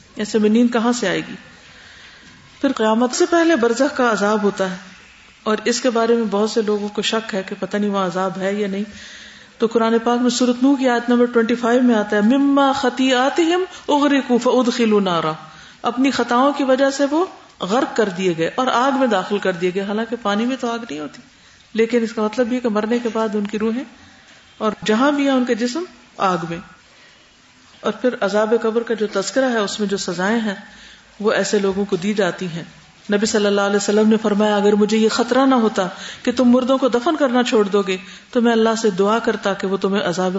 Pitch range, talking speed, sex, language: 200-250 Hz, 220 wpm, female, Urdu